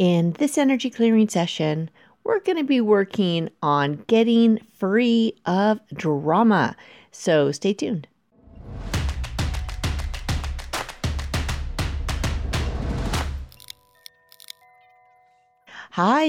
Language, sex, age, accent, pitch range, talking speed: English, female, 40-59, American, 165-230 Hz, 70 wpm